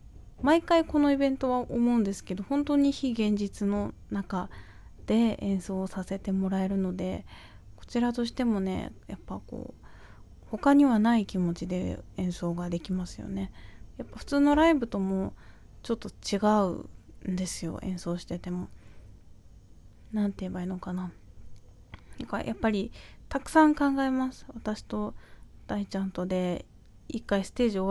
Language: Japanese